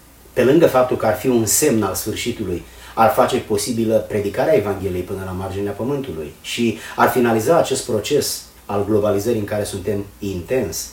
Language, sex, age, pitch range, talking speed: Romanian, male, 30-49, 100-135 Hz, 165 wpm